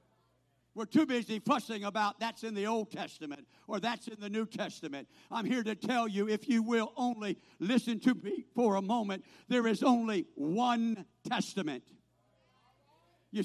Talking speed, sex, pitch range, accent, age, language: 165 wpm, male, 200-290 Hz, American, 60-79, English